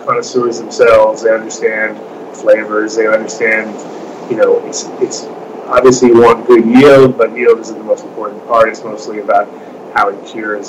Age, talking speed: 30-49, 155 wpm